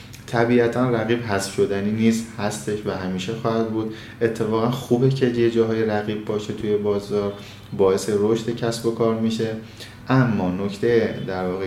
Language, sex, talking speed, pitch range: Persian, male, 155 wpm, 95-115 Hz